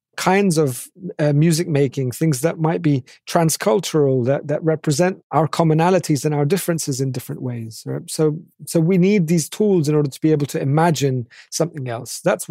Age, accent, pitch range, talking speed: 30-49, British, 140-170 Hz, 180 wpm